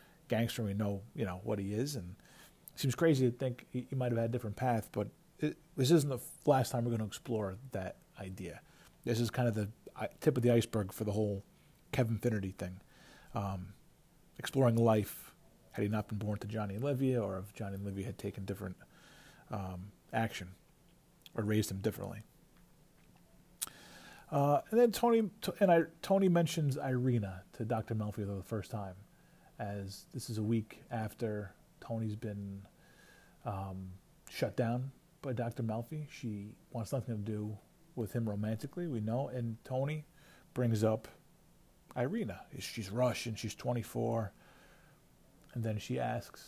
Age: 40-59